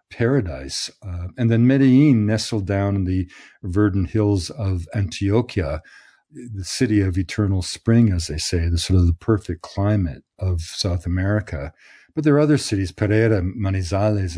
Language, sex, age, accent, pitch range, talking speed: English, male, 50-69, American, 95-115 Hz, 155 wpm